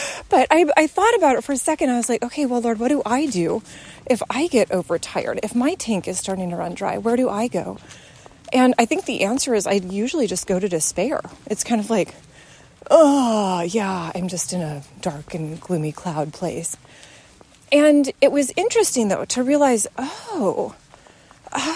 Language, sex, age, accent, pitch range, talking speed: English, female, 30-49, American, 185-250 Hz, 195 wpm